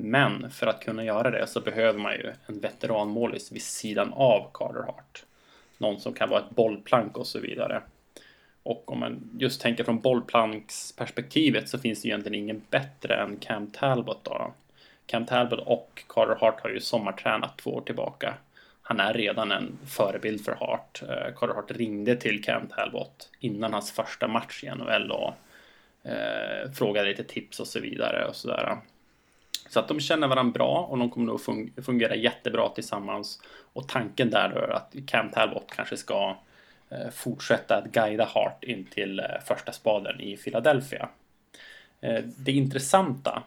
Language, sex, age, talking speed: English, male, 20-39, 160 wpm